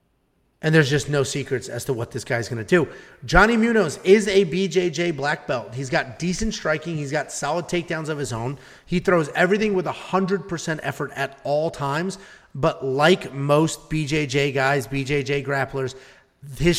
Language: English